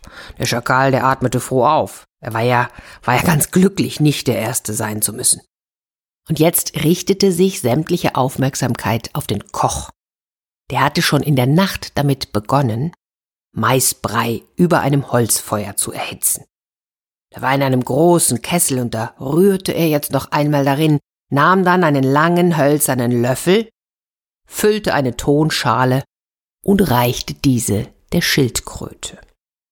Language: German